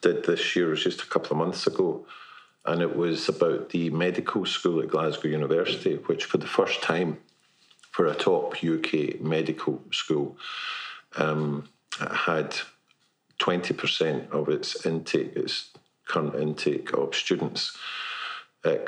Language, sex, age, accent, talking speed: English, male, 50-69, British, 135 wpm